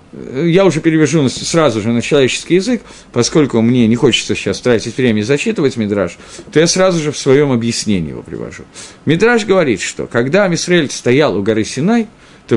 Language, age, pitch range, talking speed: Russian, 50-69, 115-185 Hz, 175 wpm